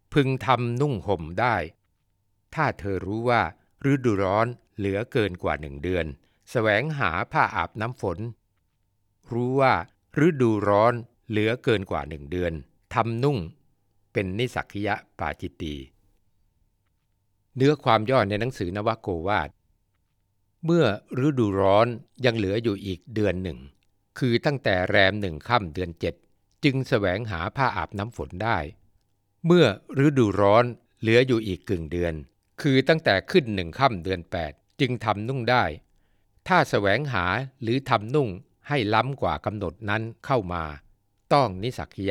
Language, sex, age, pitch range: Thai, male, 60-79, 95-120 Hz